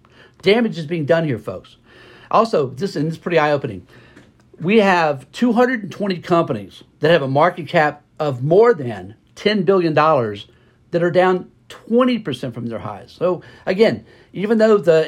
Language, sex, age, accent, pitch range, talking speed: English, male, 50-69, American, 135-175 Hz, 155 wpm